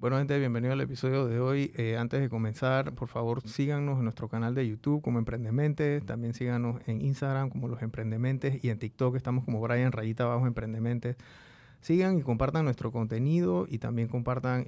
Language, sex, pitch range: Spanish, male, 115-135 Hz